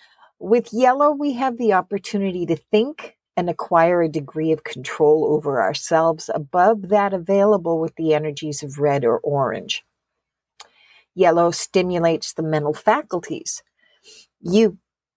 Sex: female